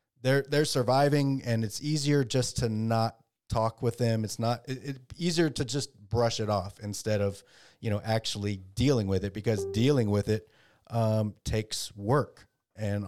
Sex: male